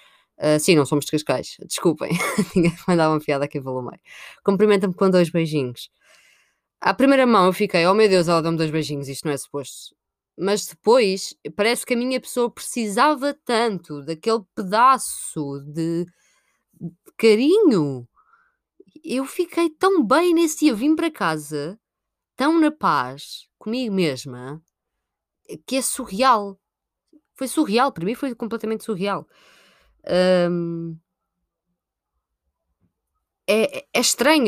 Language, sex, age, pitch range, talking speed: Portuguese, female, 20-39, 165-230 Hz, 130 wpm